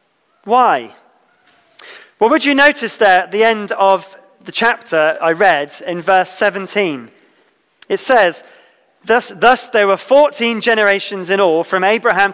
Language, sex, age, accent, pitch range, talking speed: English, male, 20-39, British, 185-235 Hz, 145 wpm